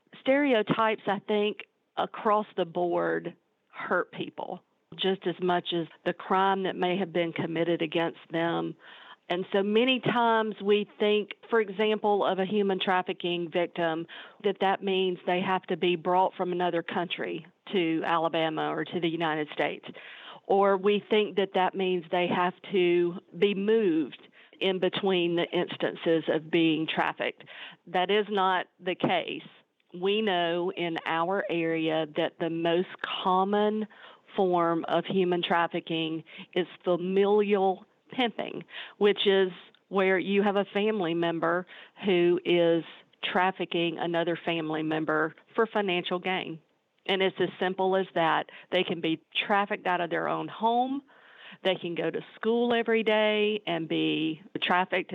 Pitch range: 170-200 Hz